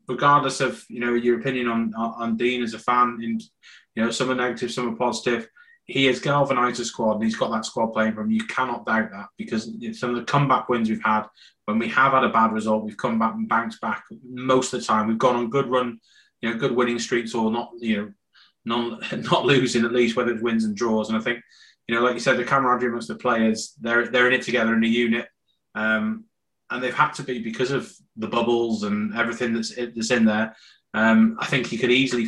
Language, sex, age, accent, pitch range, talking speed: English, male, 20-39, British, 110-125 Hz, 245 wpm